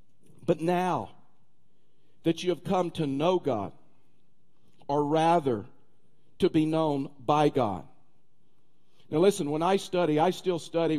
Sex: male